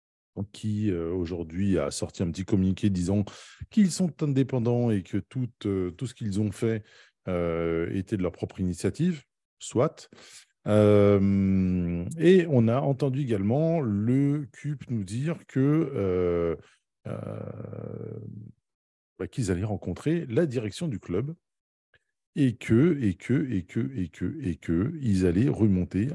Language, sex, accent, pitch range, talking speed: French, male, French, 85-120 Hz, 145 wpm